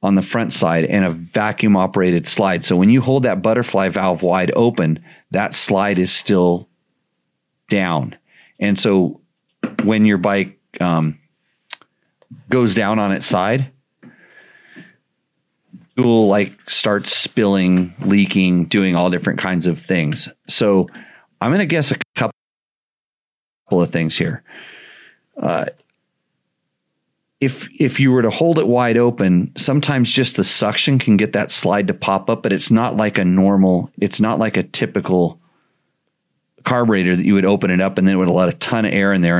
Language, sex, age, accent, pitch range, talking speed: English, male, 40-59, American, 90-115 Hz, 160 wpm